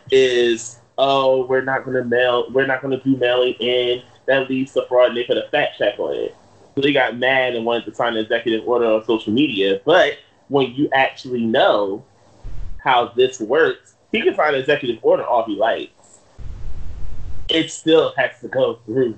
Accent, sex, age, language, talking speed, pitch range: American, male, 20-39, English, 190 wpm, 110-140 Hz